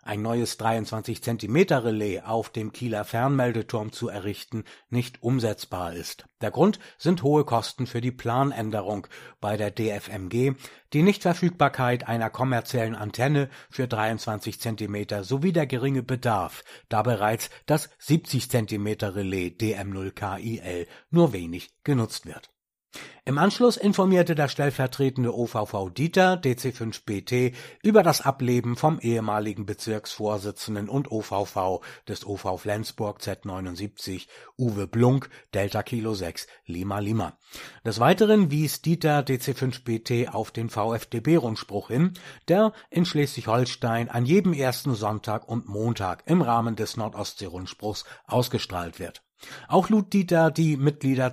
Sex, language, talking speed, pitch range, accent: male, German, 115 wpm, 105-135 Hz, German